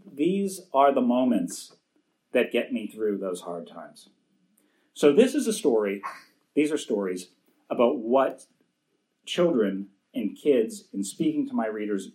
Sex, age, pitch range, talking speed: male, 40-59, 105-150 Hz, 145 wpm